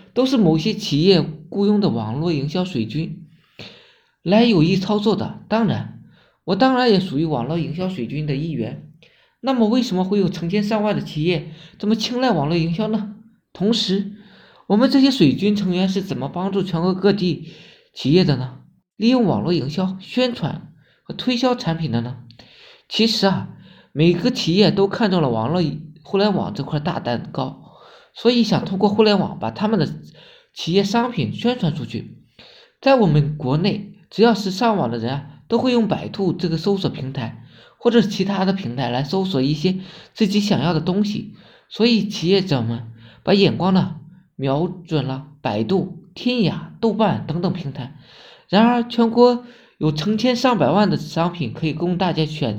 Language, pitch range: Chinese, 160-210 Hz